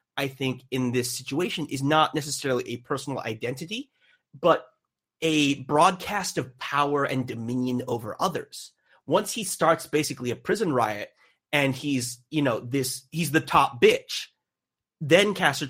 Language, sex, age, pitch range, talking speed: English, male, 30-49, 130-165 Hz, 145 wpm